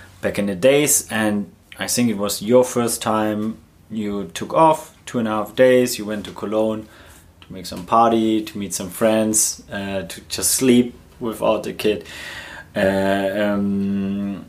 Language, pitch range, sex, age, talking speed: English, 95-115 Hz, male, 30-49, 170 wpm